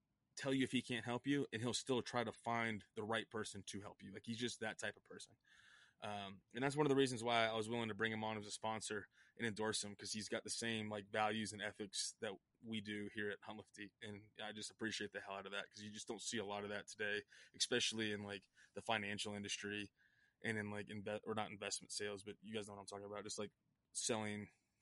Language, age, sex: English, 20-39, male